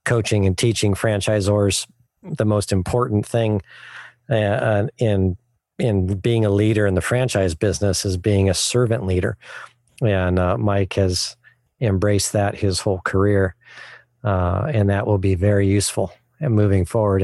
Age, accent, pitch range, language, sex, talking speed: 40-59, American, 95-110 Hz, English, male, 145 wpm